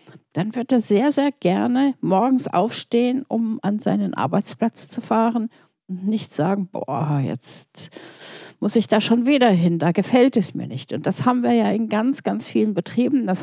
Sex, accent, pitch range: female, German, 175-235 Hz